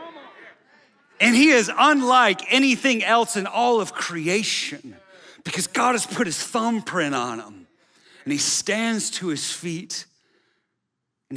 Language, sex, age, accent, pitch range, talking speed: English, male, 40-59, American, 155-215 Hz, 130 wpm